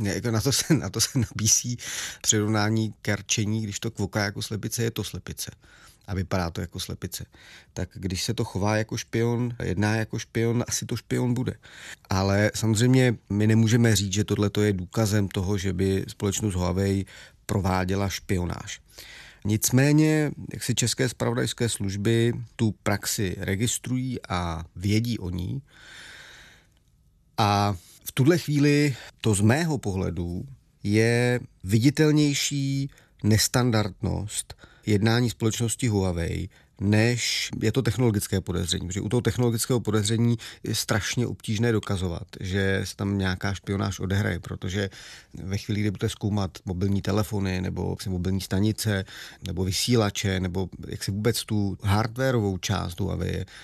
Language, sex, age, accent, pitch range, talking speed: Czech, male, 30-49, native, 100-115 Hz, 135 wpm